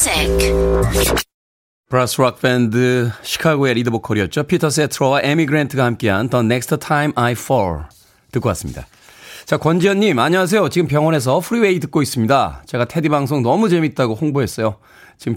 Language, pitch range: Korean, 115-175 Hz